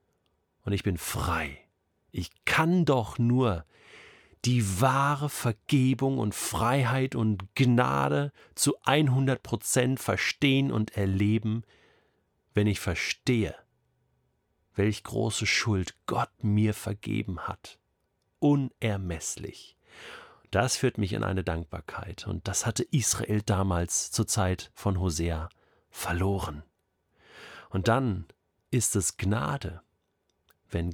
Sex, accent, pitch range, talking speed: male, German, 90-120 Hz, 105 wpm